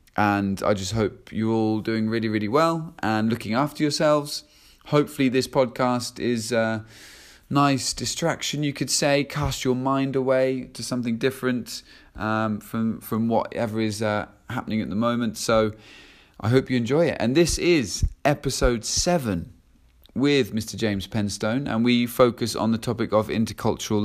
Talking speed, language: 160 wpm, English